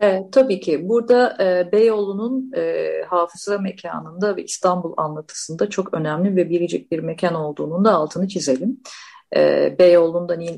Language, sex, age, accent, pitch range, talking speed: Turkish, female, 40-59, native, 160-205 Hz, 135 wpm